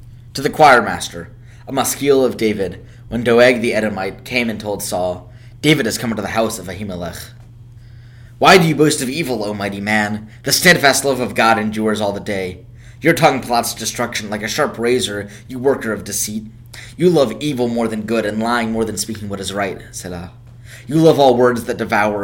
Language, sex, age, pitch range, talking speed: English, male, 20-39, 105-125 Hz, 200 wpm